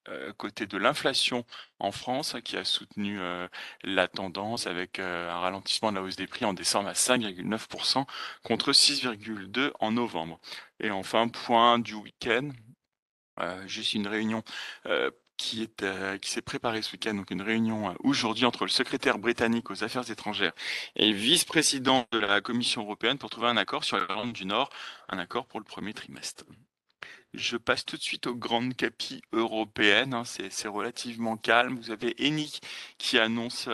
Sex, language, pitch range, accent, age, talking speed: male, French, 105-120 Hz, French, 30-49, 170 wpm